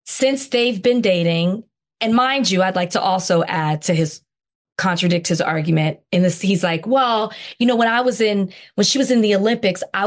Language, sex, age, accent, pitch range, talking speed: English, female, 20-39, American, 180-240 Hz, 210 wpm